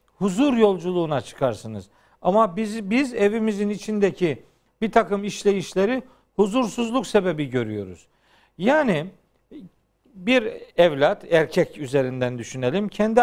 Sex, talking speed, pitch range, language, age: male, 95 wpm, 170-220 Hz, Turkish, 50-69